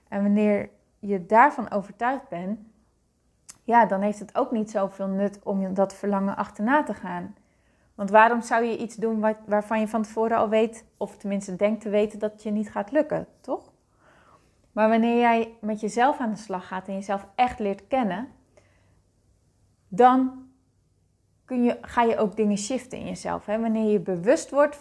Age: 20-39